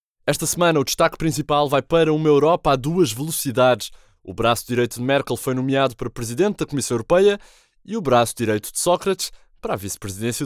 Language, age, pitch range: Portuguese, 20-39, 115-165 Hz